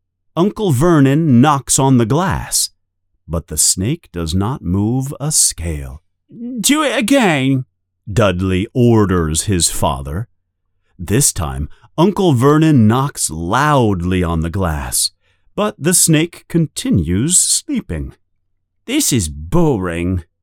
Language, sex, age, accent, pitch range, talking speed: English, male, 40-59, American, 90-130 Hz, 110 wpm